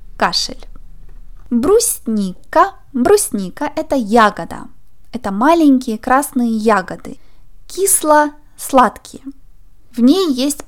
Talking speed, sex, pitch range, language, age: 75 wpm, female, 225-285 Hz, Russian, 20-39